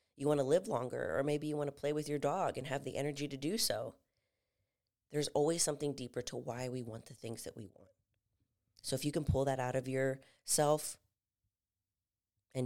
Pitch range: 110-140 Hz